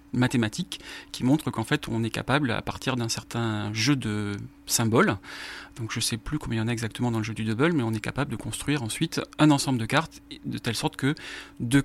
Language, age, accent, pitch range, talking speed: French, 40-59, French, 125-165 Hz, 240 wpm